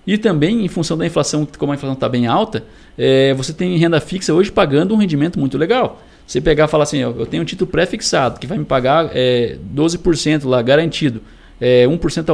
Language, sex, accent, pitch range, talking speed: Portuguese, male, Brazilian, 125-165 Hz, 215 wpm